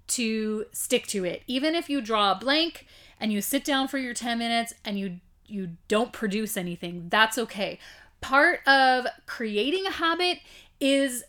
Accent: American